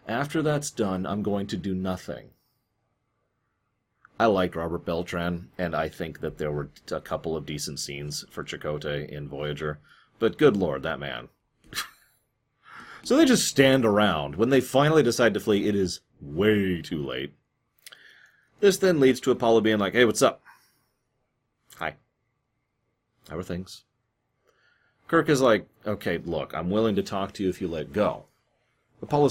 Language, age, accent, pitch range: English, 30-49, American, 90-125 Hz